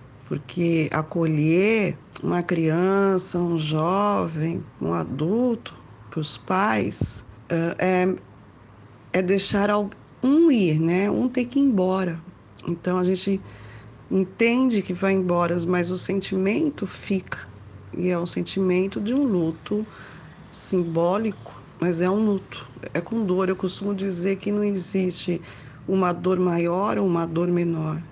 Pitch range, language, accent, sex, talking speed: 160-195 Hz, Portuguese, Brazilian, female, 130 wpm